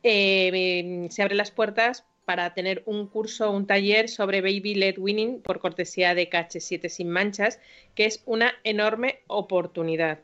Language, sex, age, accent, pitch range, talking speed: Spanish, female, 30-49, Spanish, 185-235 Hz, 165 wpm